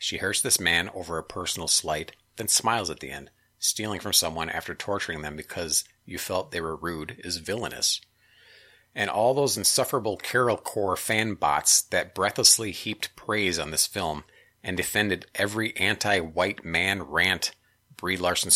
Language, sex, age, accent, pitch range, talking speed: English, male, 40-59, American, 80-100 Hz, 160 wpm